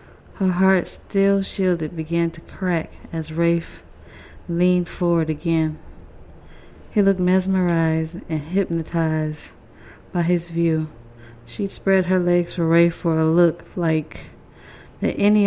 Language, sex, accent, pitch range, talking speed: English, female, American, 160-185 Hz, 125 wpm